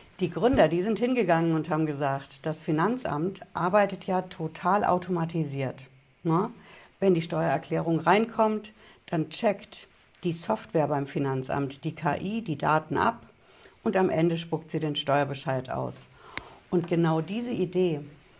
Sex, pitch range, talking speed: female, 150-190 Hz, 135 wpm